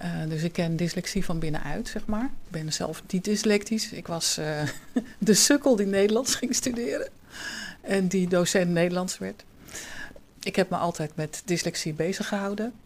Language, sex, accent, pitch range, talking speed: Dutch, female, Dutch, 165-195 Hz, 170 wpm